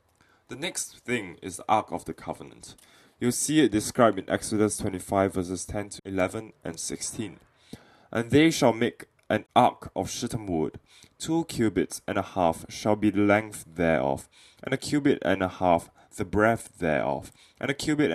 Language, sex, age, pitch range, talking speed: English, male, 10-29, 90-120 Hz, 175 wpm